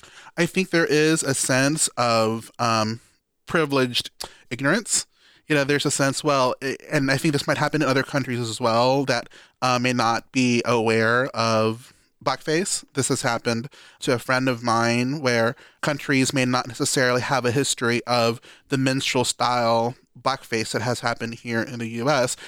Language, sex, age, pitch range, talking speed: English, male, 30-49, 120-145 Hz, 165 wpm